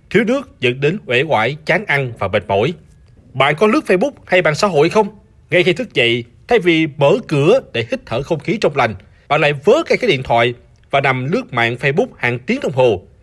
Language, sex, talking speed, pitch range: Vietnamese, male, 230 wpm, 125-185 Hz